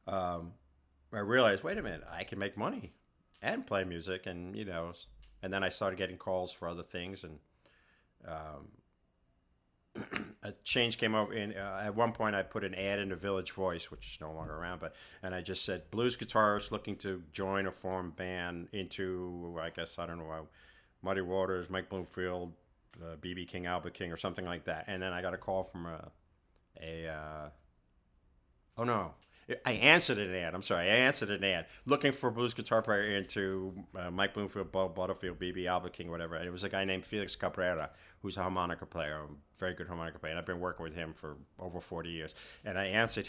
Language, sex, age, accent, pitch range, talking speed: English, male, 50-69, American, 85-100 Hz, 205 wpm